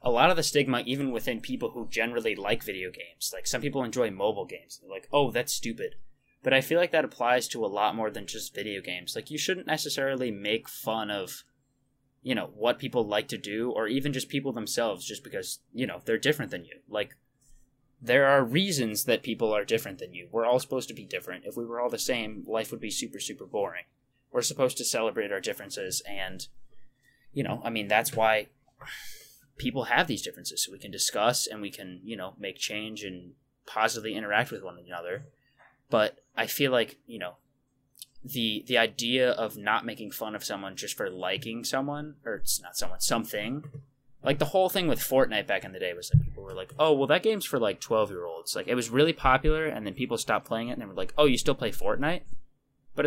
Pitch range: 115-150 Hz